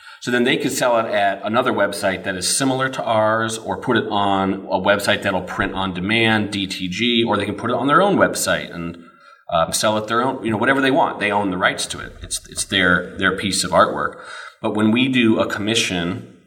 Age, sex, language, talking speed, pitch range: 30-49, male, English, 235 wpm, 90-105 Hz